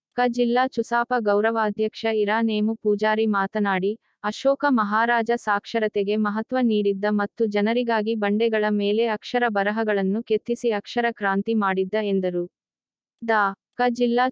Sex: female